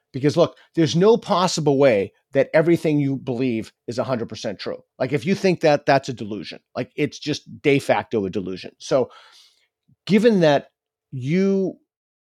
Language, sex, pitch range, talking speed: English, male, 115-150 Hz, 155 wpm